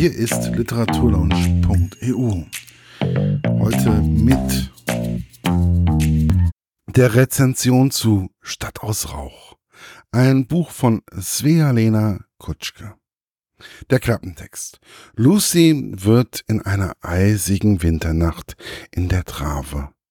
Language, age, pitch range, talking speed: German, 50-69, 85-125 Hz, 80 wpm